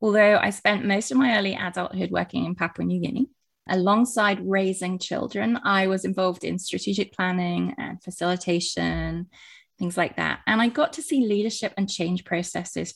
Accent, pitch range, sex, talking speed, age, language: British, 175-205 Hz, female, 165 wpm, 20-39, English